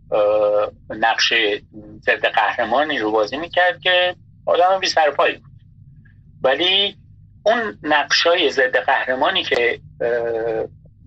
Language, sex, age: Persian, male, 50-69